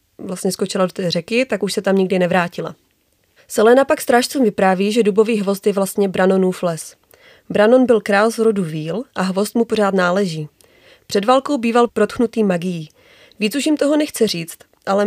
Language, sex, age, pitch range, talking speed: Czech, female, 30-49, 190-235 Hz, 180 wpm